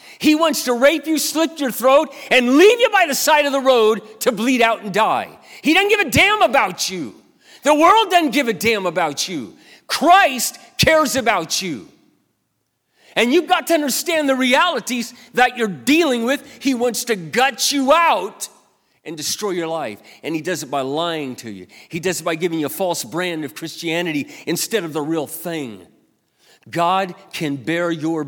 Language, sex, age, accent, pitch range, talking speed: English, male, 40-59, American, 170-255 Hz, 190 wpm